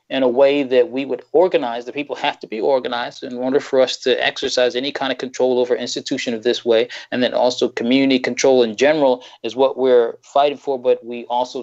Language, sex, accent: English, male, American